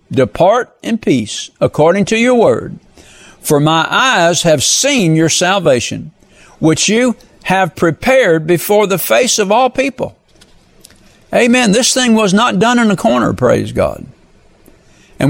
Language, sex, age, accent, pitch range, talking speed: English, male, 60-79, American, 150-225 Hz, 140 wpm